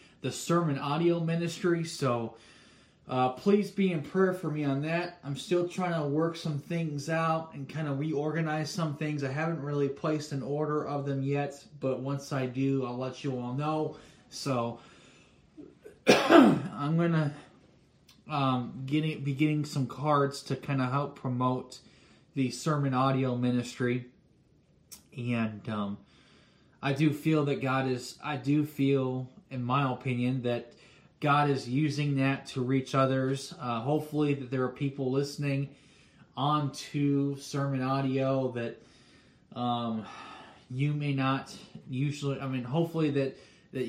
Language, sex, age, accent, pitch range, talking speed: English, male, 20-39, American, 130-150 Hz, 150 wpm